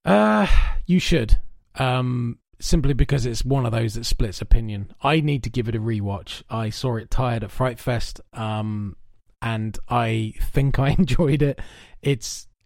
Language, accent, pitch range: English, British, 115-145 Hz